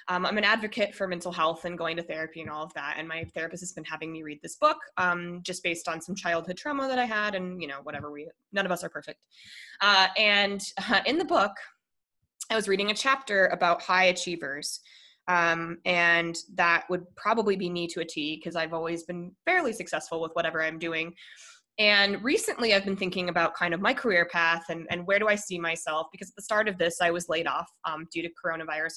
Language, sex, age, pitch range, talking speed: English, female, 20-39, 165-200 Hz, 230 wpm